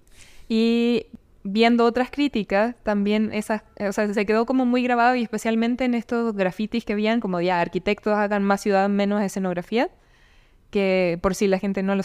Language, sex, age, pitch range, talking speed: Spanish, female, 20-39, 190-225 Hz, 180 wpm